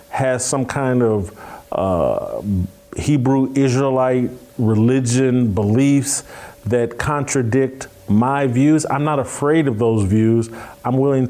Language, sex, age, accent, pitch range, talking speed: English, male, 40-59, American, 110-140 Hz, 105 wpm